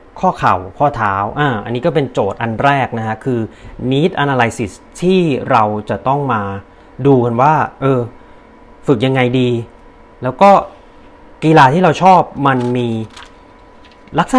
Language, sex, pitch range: Thai, male, 115-155 Hz